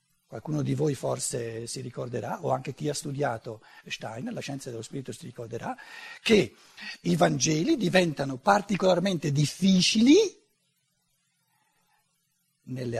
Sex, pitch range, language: male, 140-180 Hz, Italian